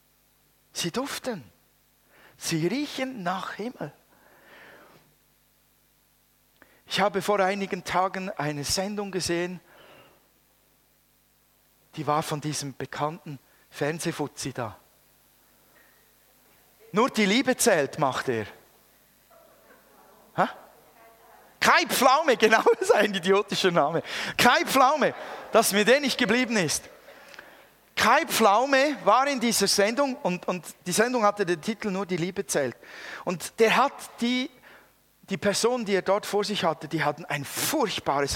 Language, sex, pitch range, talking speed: German, male, 155-210 Hz, 115 wpm